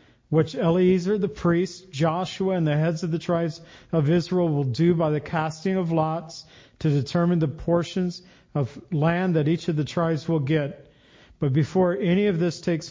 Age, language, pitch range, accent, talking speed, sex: 50-69, English, 145-175 Hz, American, 180 wpm, male